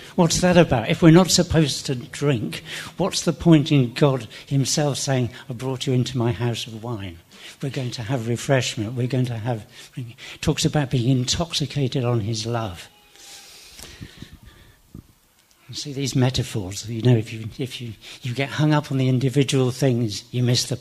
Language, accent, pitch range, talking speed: English, British, 115-140 Hz, 180 wpm